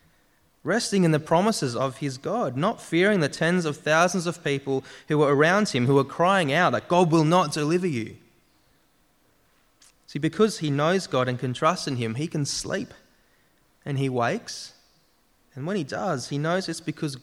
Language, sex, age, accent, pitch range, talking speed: English, male, 20-39, Australian, 125-160 Hz, 185 wpm